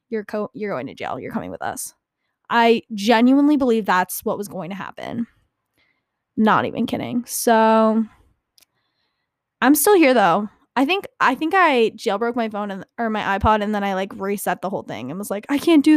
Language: English